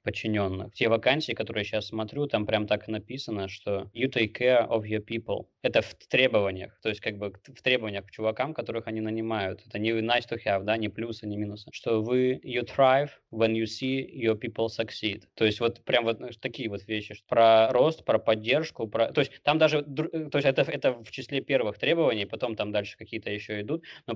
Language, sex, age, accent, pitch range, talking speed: Russian, male, 20-39, native, 105-120 Hz, 210 wpm